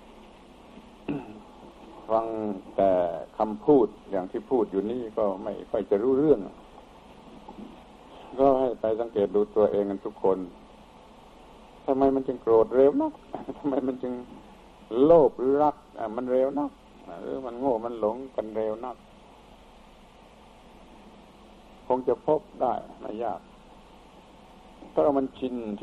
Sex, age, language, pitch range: male, 60-79, Thai, 105-130 Hz